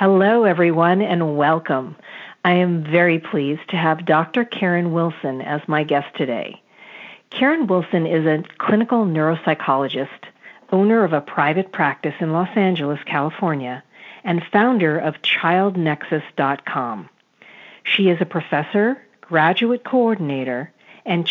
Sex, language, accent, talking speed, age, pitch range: female, English, American, 120 wpm, 50-69, 155-190 Hz